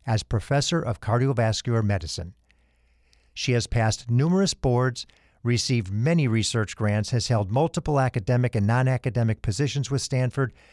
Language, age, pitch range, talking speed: English, 50-69, 105-140 Hz, 135 wpm